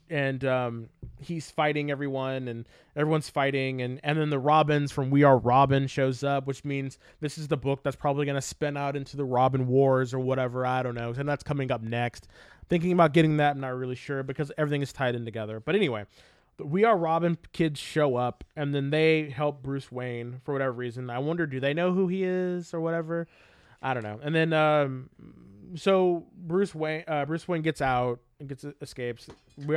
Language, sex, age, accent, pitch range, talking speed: English, male, 20-39, American, 130-160 Hz, 210 wpm